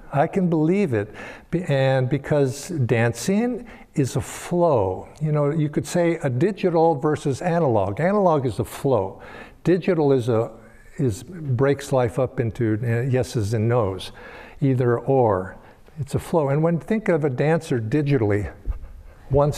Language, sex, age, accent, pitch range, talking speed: English, male, 60-79, American, 115-170 Hz, 145 wpm